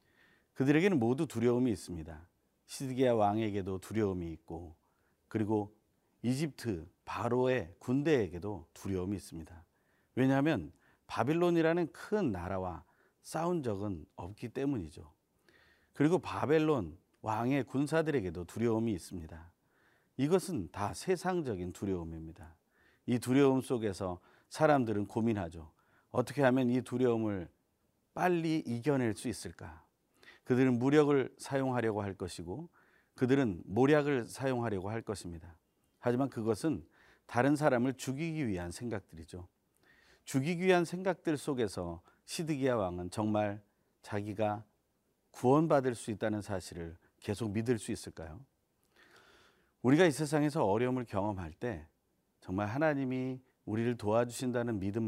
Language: Korean